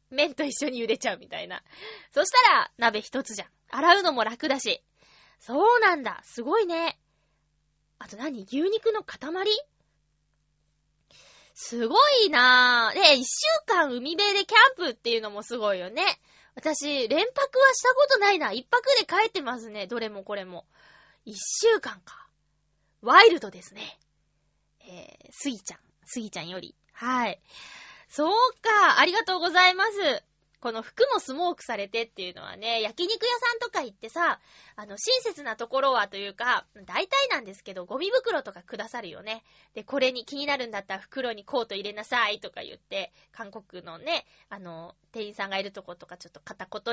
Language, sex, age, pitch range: Japanese, female, 20-39, 215-345 Hz